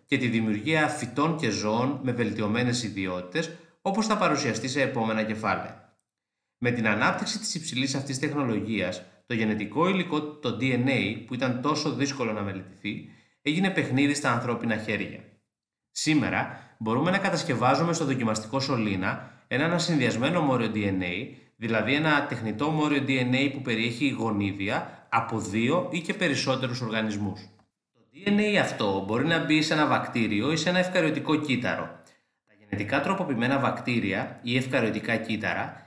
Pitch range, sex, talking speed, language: 110-150 Hz, male, 140 wpm, Greek